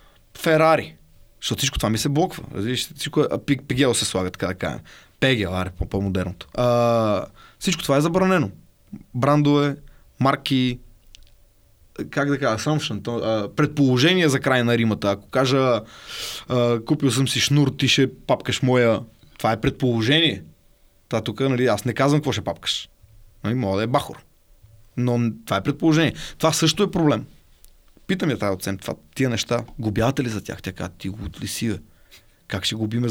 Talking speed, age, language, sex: 155 wpm, 20-39, Bulgarian, male